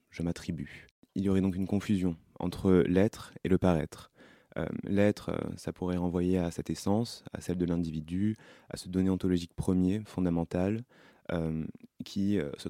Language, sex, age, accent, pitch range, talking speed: French, male, 20-39, French, 80-95 Hz, 160 wpm